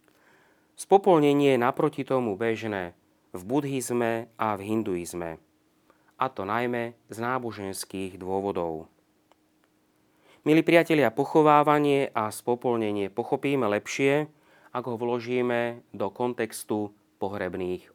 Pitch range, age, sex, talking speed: 100-130 Hz, 30-49, male, 95 wpm